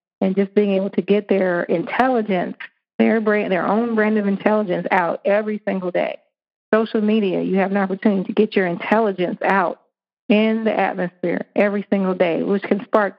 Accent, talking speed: American, 175 wpm